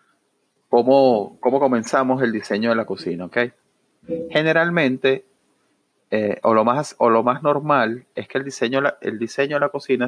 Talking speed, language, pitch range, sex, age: 160 wpm, Spanish, 115-140 Hz, male, 30-49